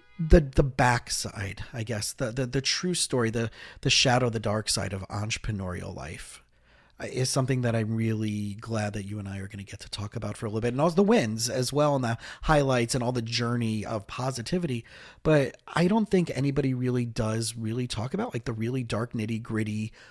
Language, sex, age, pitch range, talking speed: English, male, 30-49, 105-135 Hz, 215 wpm